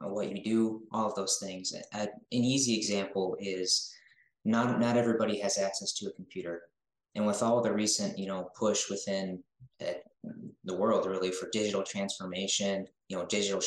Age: 20-39